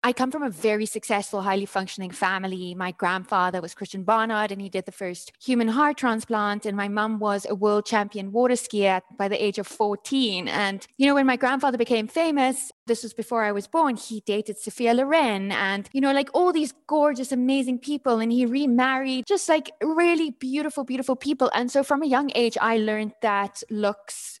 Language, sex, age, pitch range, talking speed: English, female, 20-39, 190-240 Hz, 200 wpm